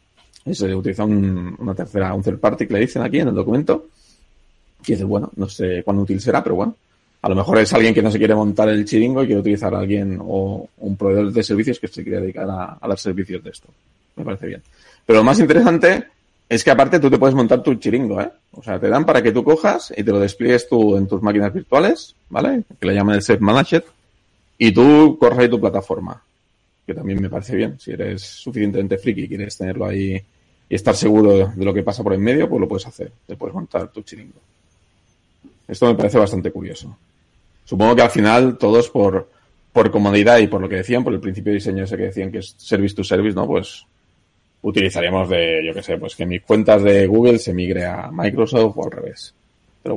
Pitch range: 95-115 Hz